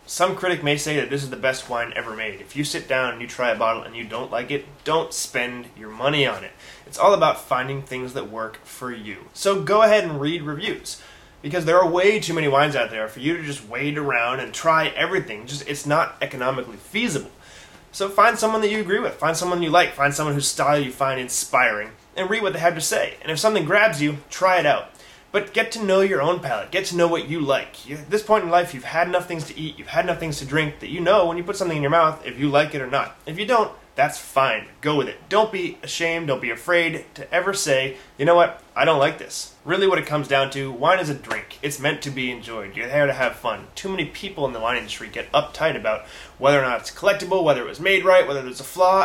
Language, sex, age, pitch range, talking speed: English, male, 20-39, 135-180 Hz, 265 wpm